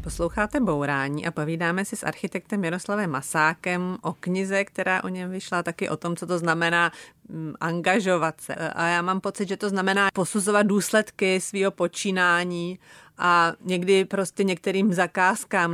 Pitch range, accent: 170-200 Hz, native